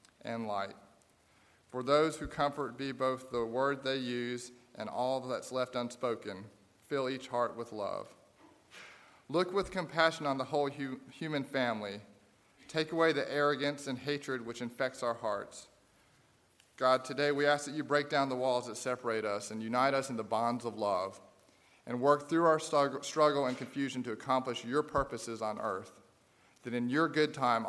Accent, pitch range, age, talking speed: American, 115-140 Hz, 40-59, 170 wpm